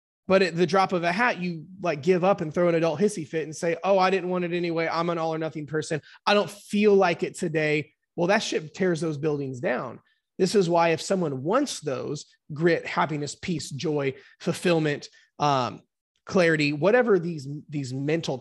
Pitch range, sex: 140-175 Hz, male